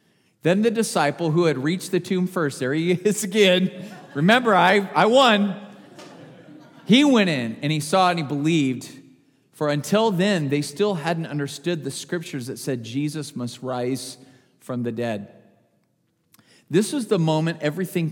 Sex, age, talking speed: male, 40-59, 160 wpm